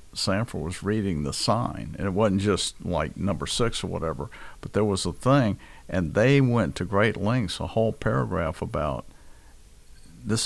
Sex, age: male, 50-69